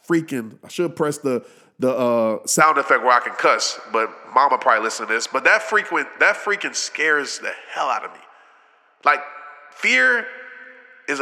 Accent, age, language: American, 20-39, English